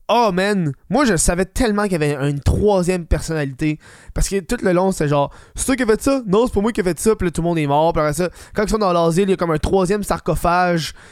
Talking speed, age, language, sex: 290 wpm, 20-39, French, male